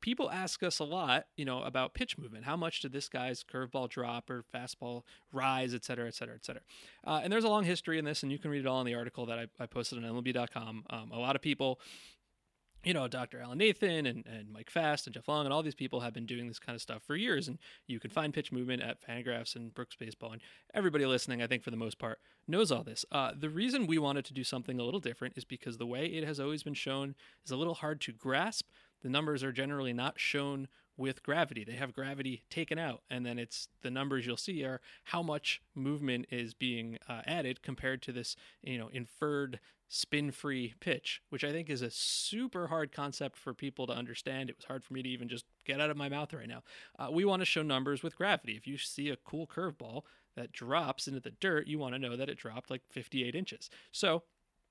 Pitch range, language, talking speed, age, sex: 120-150 Hz, English, 245 wpm, 30-49, male